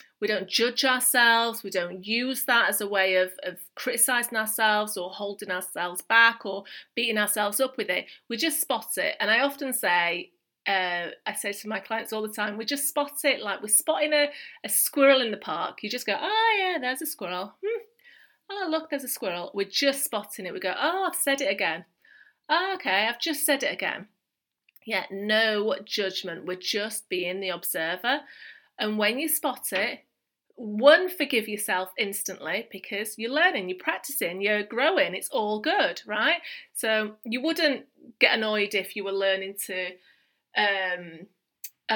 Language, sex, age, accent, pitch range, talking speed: English, female, 30-49, British, 195-275 Hz, 180 wpm